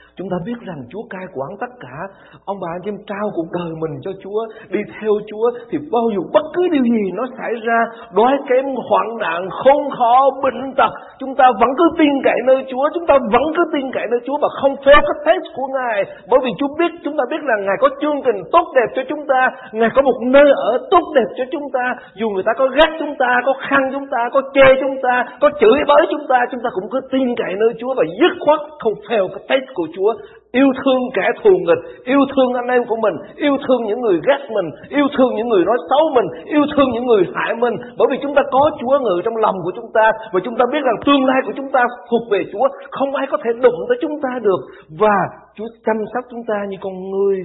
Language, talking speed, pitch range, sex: Vietnamese, 250 wpm, 195-280 Hz, male